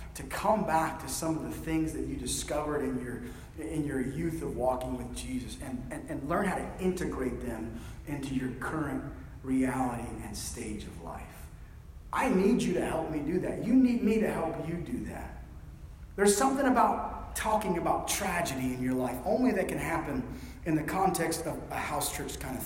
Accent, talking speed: American, 195 wpm